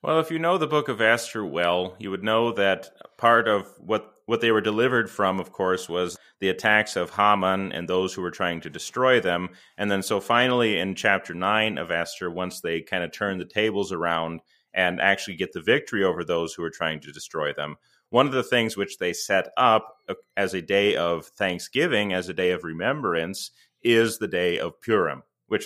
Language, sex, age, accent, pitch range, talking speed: English, male, 30-49, American, 90-115 Hz, 210 wpm